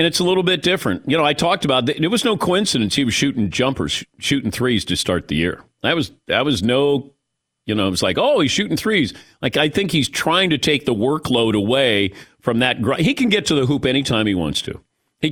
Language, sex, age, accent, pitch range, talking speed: English, male, 50-69, American, 115-155 Hz, 245 wpm